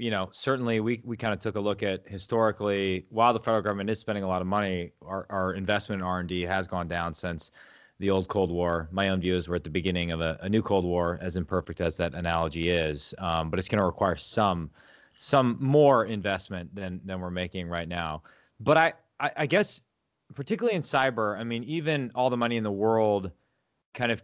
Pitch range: 95-120 Hz